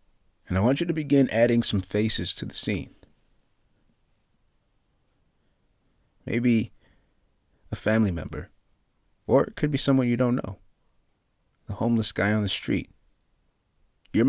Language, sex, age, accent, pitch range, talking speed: English, male, 30-49, American, 90-115 Hz, 130 wpm